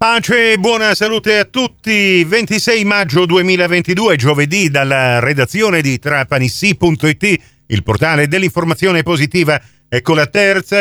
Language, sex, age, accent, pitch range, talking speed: Italian, male, 50-69, native, 150-225 Hz, 115 wpm